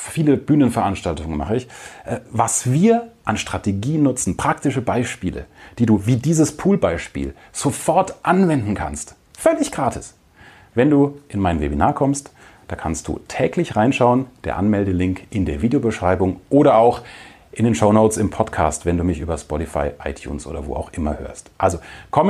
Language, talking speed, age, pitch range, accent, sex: German, 155 wpm, 40-59, 95-145 Hz, German, male